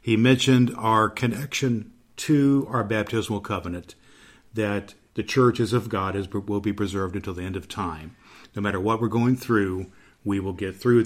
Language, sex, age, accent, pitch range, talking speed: English, male, 50-69, American, 100-120 Hz, 170 wpm